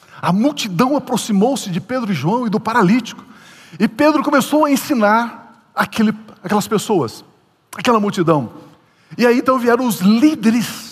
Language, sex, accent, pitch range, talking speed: Portuguese, male, Brazilian, 175-240 Hz, 135 wpm